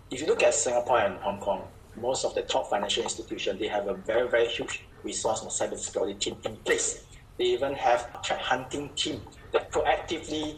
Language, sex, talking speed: English, male, 200 wpm